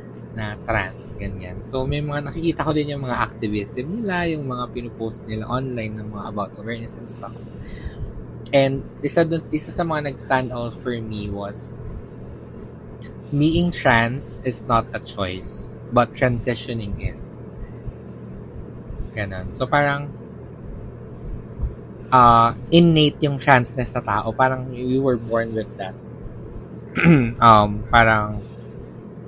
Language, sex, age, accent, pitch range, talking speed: Filipino, male, 20-39, native, 110-145 Hz, 125 wpm